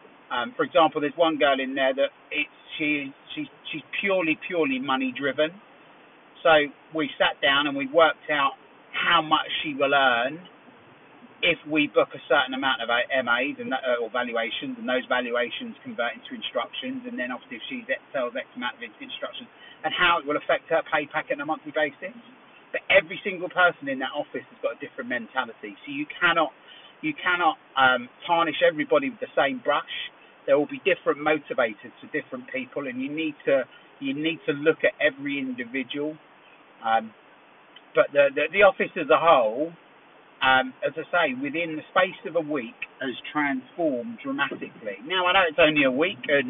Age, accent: 30-49, British